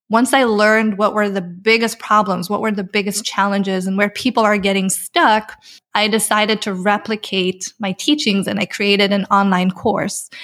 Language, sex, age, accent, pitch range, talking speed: English, female, 20-39, American, 200-235 Hz, 180 wpm